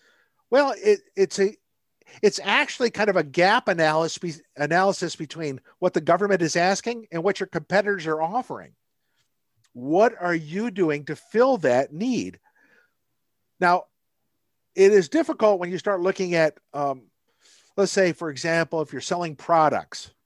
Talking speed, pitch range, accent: 150 wpm, 150-205 Hz, American